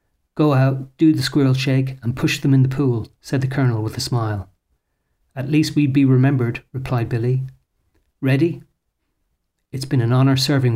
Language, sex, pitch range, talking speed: English, male, 125-150 Hz, 175 wpm